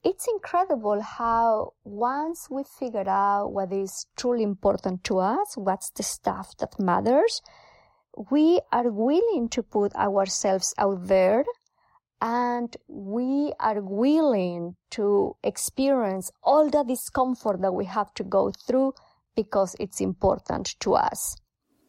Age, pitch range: 30-49, 200-270 Hz